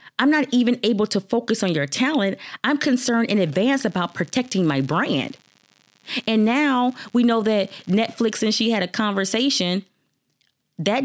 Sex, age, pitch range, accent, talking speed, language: female, 30-49, 165-250 Hz, American, 155 wpm, English